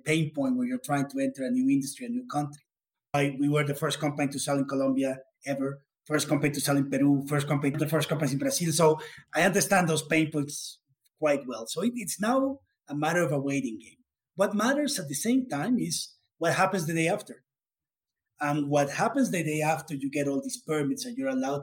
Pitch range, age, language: 140-195 Hz, 30-49, English